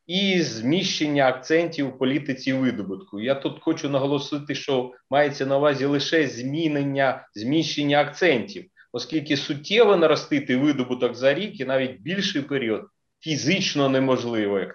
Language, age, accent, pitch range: Ukrainian, 30-49, native, 130-175 Hz